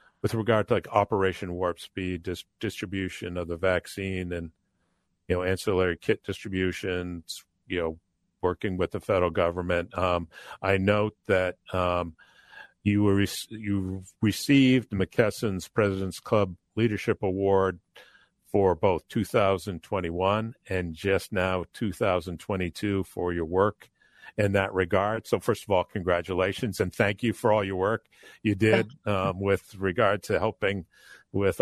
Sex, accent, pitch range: male, American, 90-105 Hz